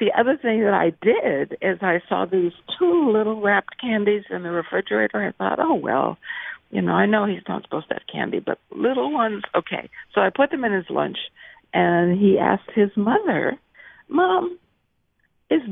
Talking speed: 185 wpm